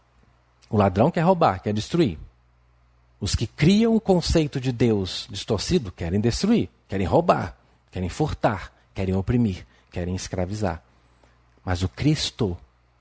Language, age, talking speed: Portuguese, 40-59, 125 wpm